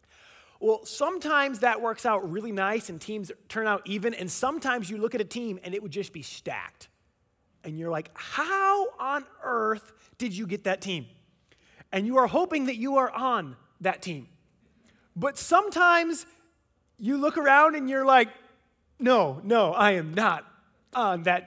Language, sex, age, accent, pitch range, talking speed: English, male, 30-49, American, 165-255 Hz, 170 wpm